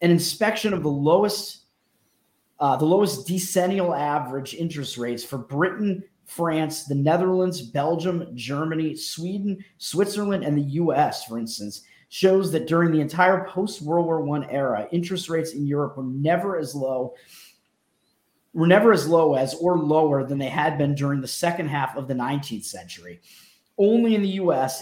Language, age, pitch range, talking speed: English, 30-49, 135-175 Hz, 160 wpm